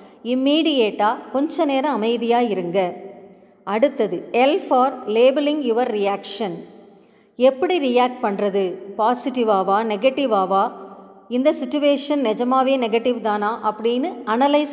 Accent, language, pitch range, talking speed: native, Tamil, 215-280 Hz, 95 wpm